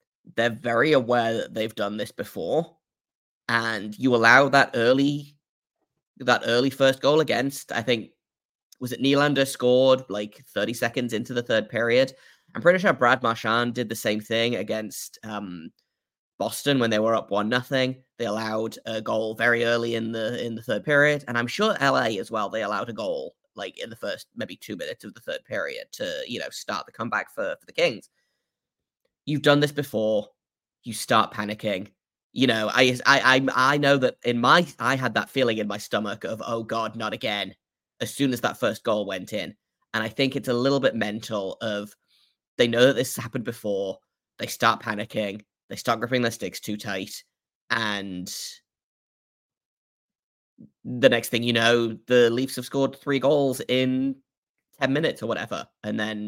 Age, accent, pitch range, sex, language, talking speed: 10-29, British, 110-135 Hz, male, English, 185 wpm